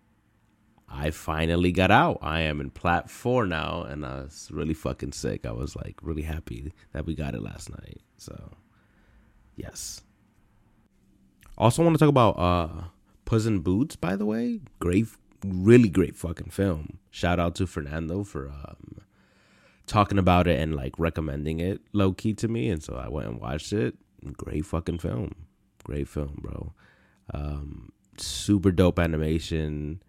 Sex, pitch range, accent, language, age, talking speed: male, 75-100 Hz, American, English, 30-49, 155 wpm